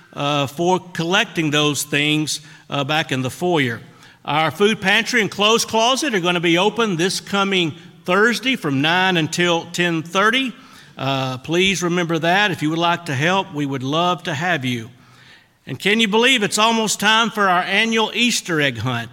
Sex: male